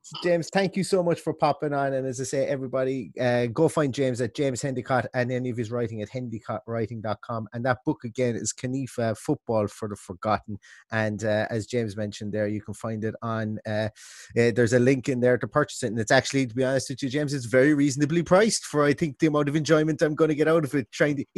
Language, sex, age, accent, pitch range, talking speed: English, male, 30-49, British, 110-145 Hz, 245 wpm